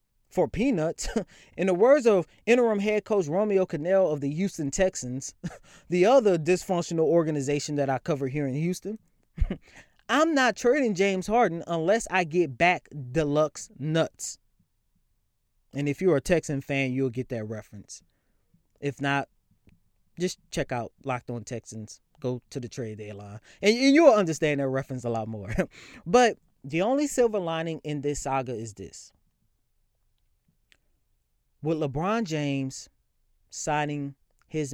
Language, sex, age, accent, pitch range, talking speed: English, male, 20-39, American, 115-175 Hz, 145 wpm